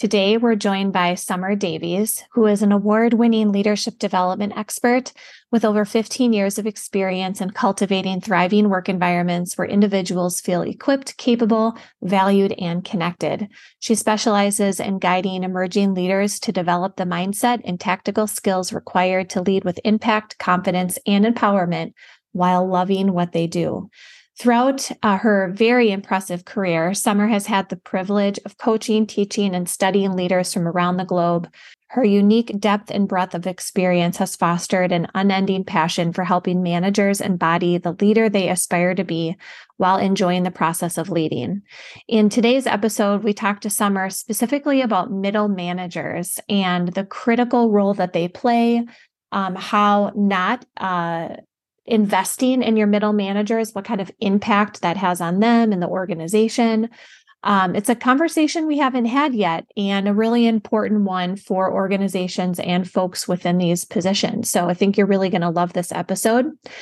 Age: 20-39